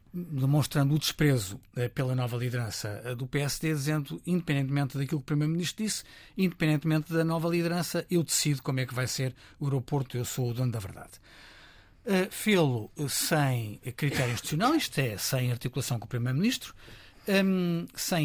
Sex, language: male, Portuguese